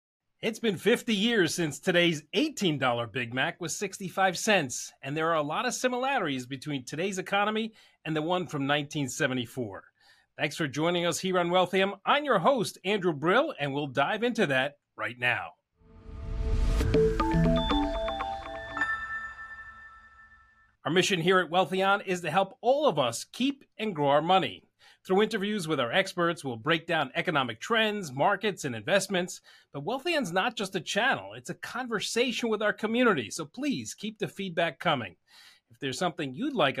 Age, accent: 30-49, American